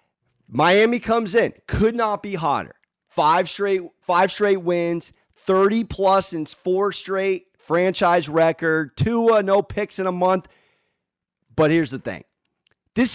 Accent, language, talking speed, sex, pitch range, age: American, English, 135 wpm, male, 165-225 Hz, 30-49